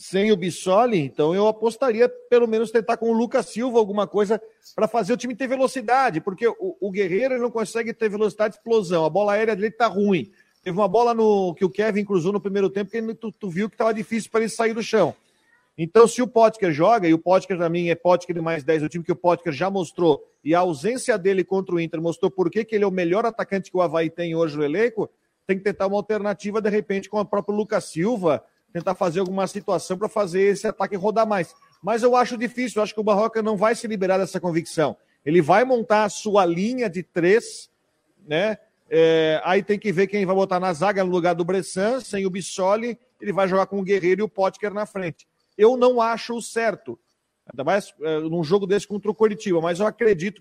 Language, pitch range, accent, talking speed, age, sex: Portuguese, 185-225 Hz, Brazilian, 230 wpm, 40-59, male